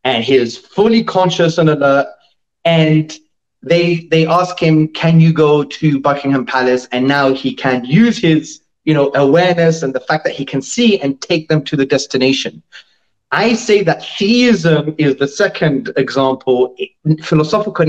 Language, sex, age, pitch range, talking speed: English, male, 30-49, 145-180 Hz, 165 wpm